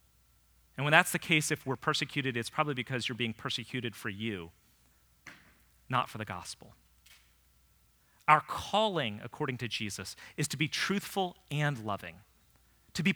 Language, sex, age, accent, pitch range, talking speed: English, male, 40-59, American, 100-160 Hz, 150 wpm